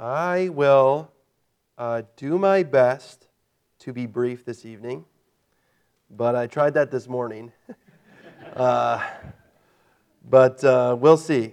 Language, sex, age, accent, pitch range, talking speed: English, male, 40-59, American, 120-145 Hz, 115 wpm